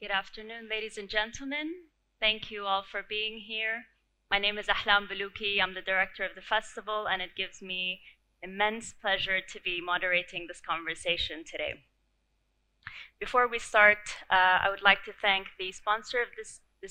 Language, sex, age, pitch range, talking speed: English, female, 20-39, 185-220 Hz, 160 wpm